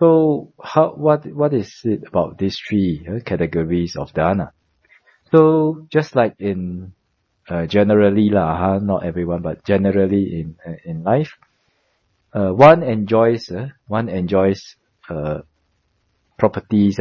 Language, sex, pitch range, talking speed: English, male, 90-125 Hz, 130 wpm